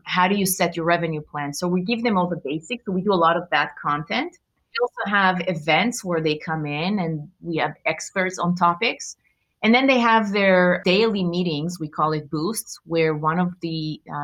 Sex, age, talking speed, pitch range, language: female, 30-49, 215 wpm, 150-185 Hz, English